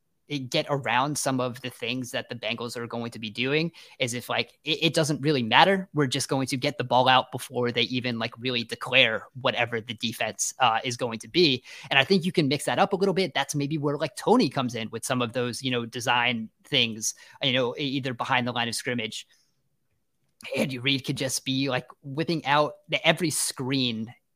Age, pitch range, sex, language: 20-39, 120-145 Hz, male, English